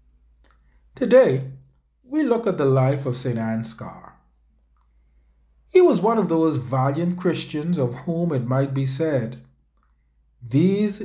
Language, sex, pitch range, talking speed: English, male, 115-180 Hz, 125 wpm